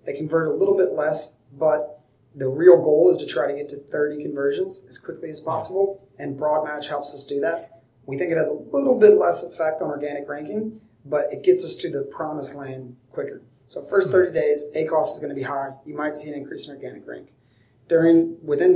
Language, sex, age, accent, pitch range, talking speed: English, male, 30-49, American, 140-160 Hz, 220 wpm